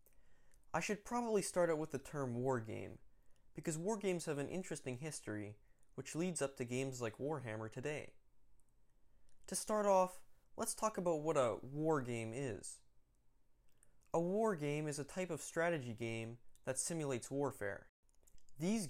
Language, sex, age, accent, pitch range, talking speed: English, male, 20-39, American, 125-170 Hz, 155 wpm